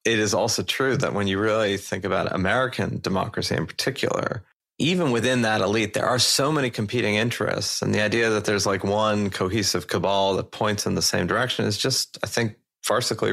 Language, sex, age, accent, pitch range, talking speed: English, male, 30-49, American, 95-115 Hz, 200 wpm